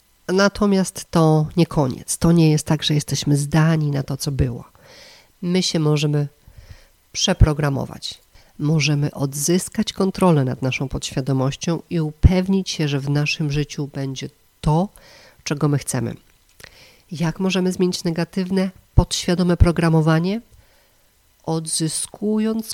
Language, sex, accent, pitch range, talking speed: Polish, female, native, 140-170 Hz, 115 wpm